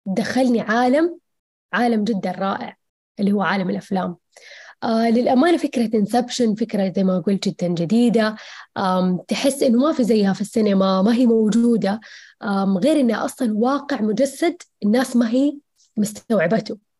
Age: 20-39